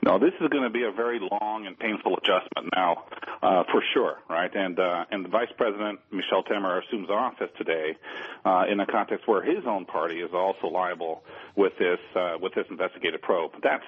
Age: 40-59